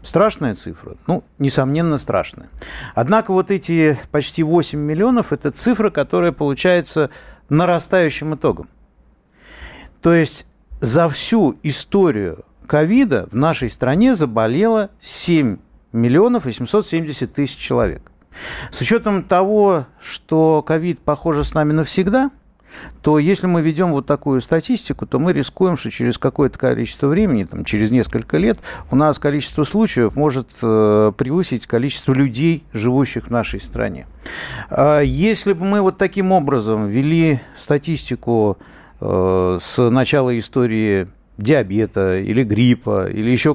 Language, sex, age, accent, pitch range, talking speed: Russian, male, 50-69, native, 120-170 Hz, 125 wpm